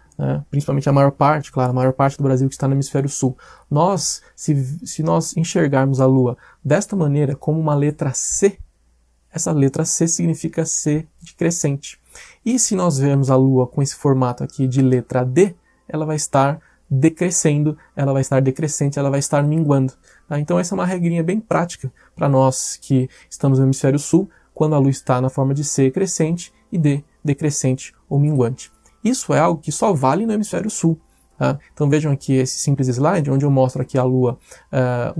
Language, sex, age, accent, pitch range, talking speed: Portuguese, male, 20-39, Brazilian, 130-160 Hz, 190 wpm